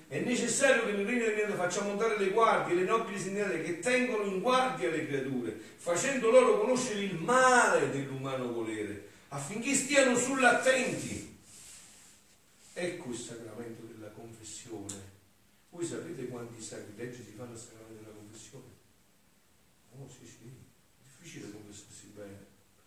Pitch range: 110-175 Hz